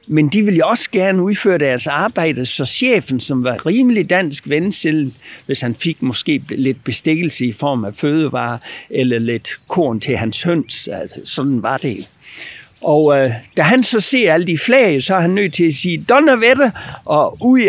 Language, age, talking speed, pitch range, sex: Danish, 60-79, 175 wpm, 125-170 Hz, male